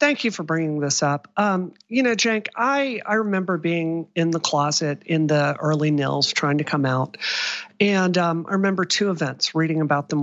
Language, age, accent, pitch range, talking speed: English, 40-59, American, 150-195 Hz, 200 wpm